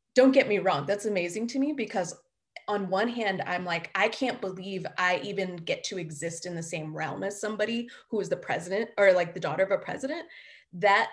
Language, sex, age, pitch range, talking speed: English, female, 20-39, 175-210 Hz, 215 wpm